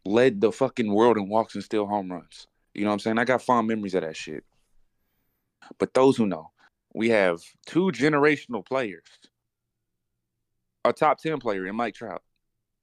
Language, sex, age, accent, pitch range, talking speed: English, male, 30-49, American, 110-130 Hz, 180 wpm